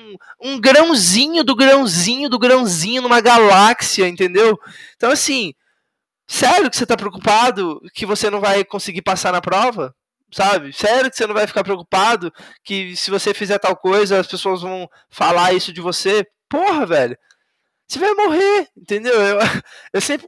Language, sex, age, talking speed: Portuguese, male, 20-39, 165 wpm